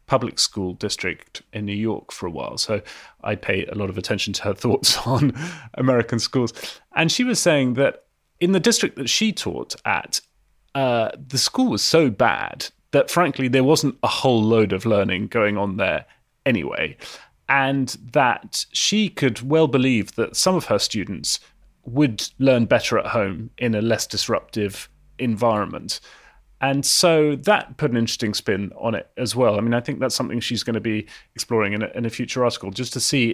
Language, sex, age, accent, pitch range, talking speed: English, male, 30-49, British, 110-135 Hz, 185 wpm